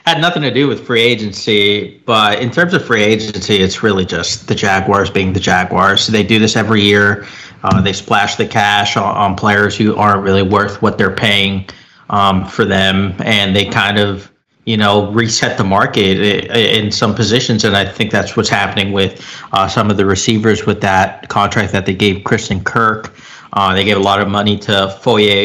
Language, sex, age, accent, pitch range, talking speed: English, male, 30-49, American, 100-115 Hz, 200 wpm